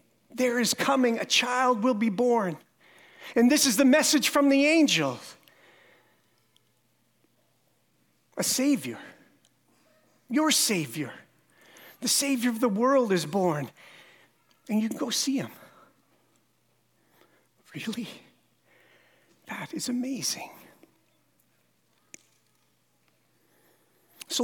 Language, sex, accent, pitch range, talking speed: English, male, American, 215-255 Hz, 95 wpm